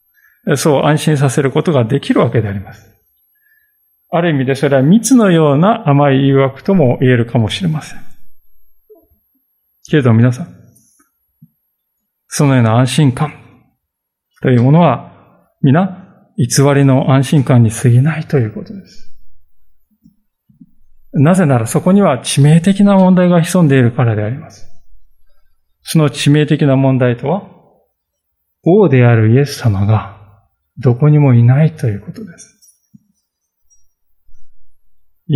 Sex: male